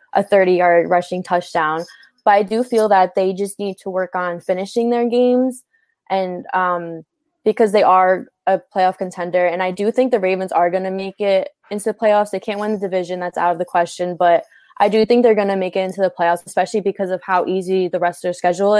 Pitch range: 180-205 Hz